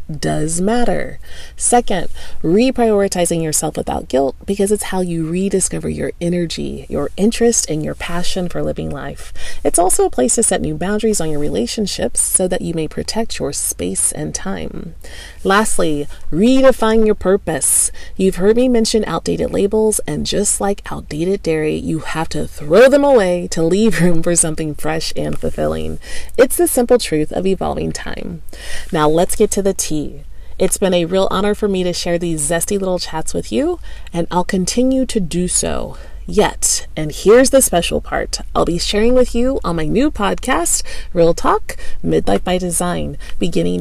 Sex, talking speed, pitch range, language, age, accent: female, 175 wpm, 155-215 Hz, English, 30-49, American